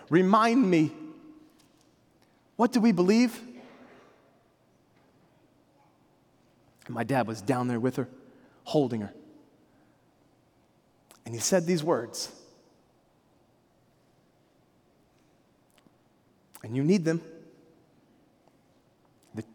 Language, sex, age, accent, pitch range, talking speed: English, male, 30-49, American, 120-170 Hz, 80 wpm